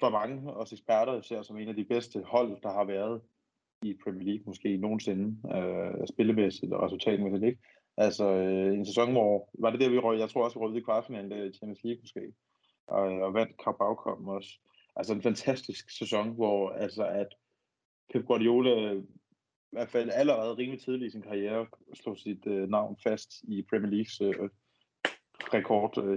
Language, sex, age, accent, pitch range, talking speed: Danish, male, 20-39, native, 105-125 Hz, 185 wpm